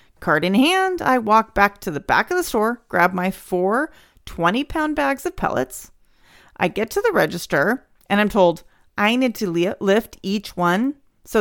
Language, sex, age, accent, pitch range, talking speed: English, female, 40-59, American, 175-255 Hz, 180 wpm